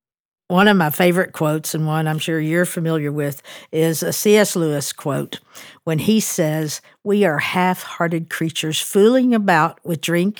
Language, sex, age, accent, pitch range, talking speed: English, female, 60-79, American, 160-185 Hz, 160 wpm